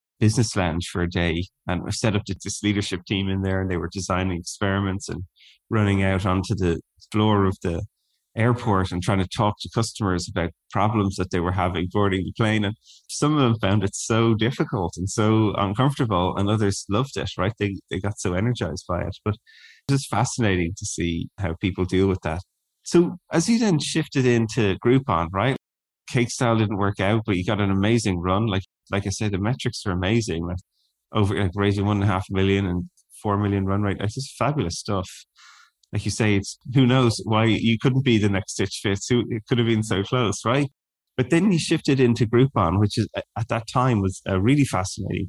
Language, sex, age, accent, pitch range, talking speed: English, male, 20-39, Irish, 95-115 Hz, 210 wpm